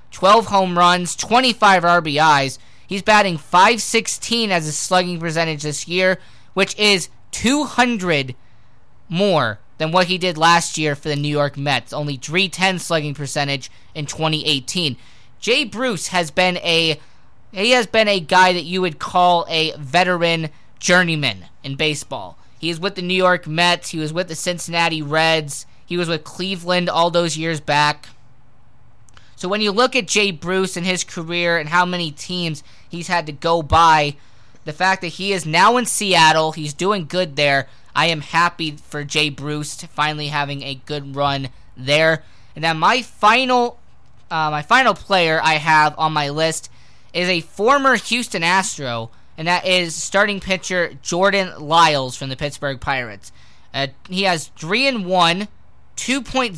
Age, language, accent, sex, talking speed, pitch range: 20-39, English, American, male, 165 wpm, 150-185 Hz